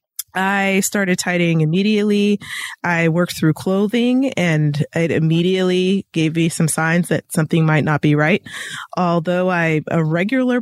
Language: English